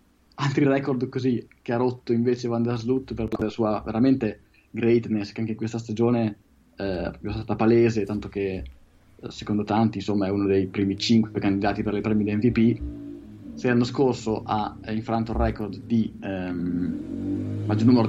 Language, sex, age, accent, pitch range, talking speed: Italian, male, 20-39, native, 100-115 Hz, 165 wpm